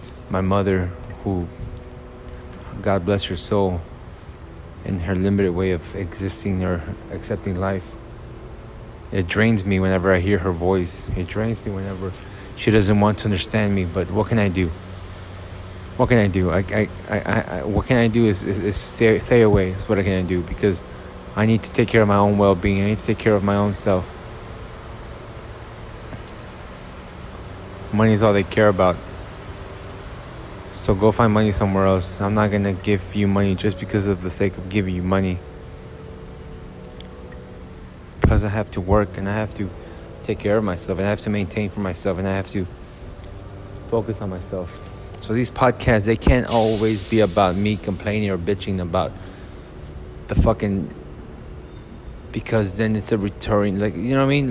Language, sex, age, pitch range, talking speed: English, male, 20-39, 90-105 Hz, 175 wpm